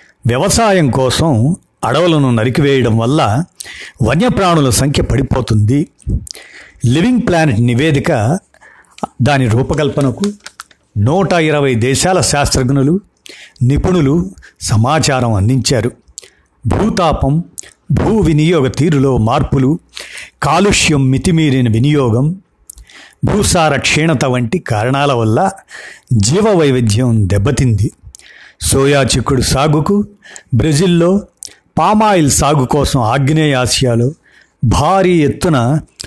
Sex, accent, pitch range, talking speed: male, native, 125-165 Hz, 75 wpm